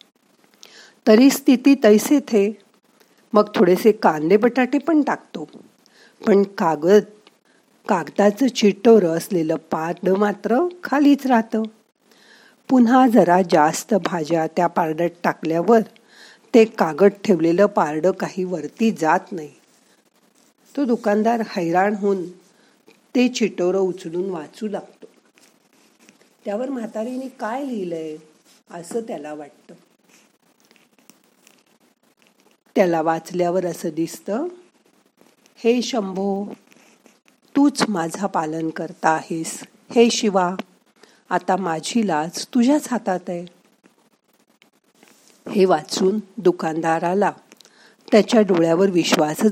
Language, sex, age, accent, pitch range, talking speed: Marathi, female, 50-69, native, 175-230 Hz, 60 wpm